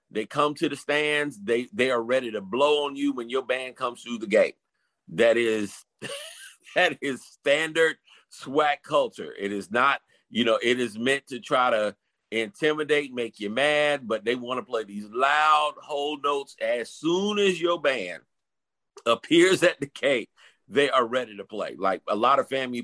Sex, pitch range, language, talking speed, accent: male, 120-160 Hz, English, 185 wpm, American